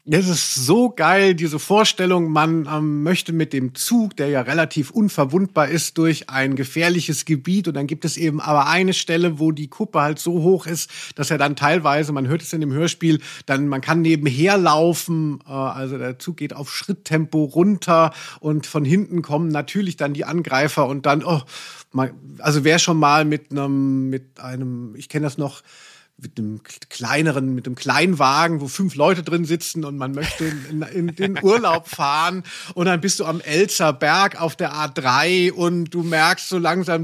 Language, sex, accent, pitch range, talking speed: German, male, German, 145-180 Hz, 190 wpm